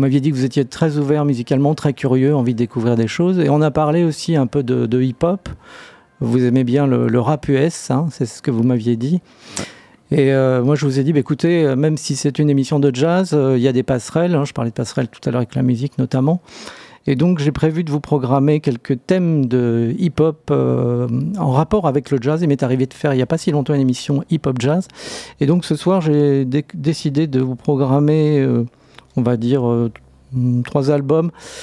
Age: 40-59